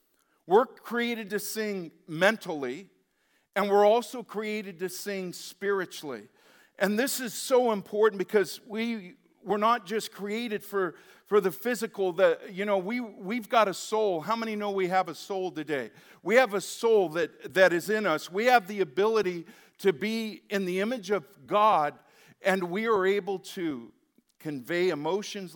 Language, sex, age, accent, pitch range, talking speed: English, male, 50-69, American, 175-215 Hz, 165 wpm